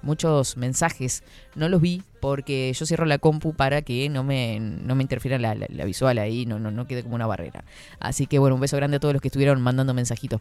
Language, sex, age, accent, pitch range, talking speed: Spanish, female, 20-39, Argentinian, 130-190 Hz, 240 wpm